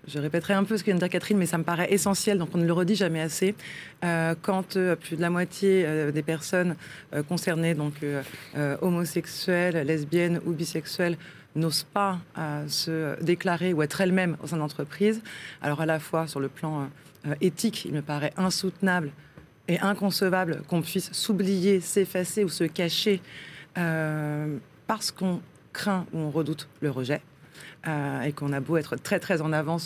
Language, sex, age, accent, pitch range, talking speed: French, female, 20-39, French, 150-185 Hz, 185 wpm